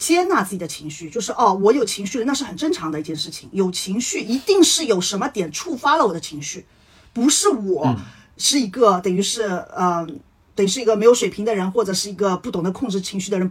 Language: Chinese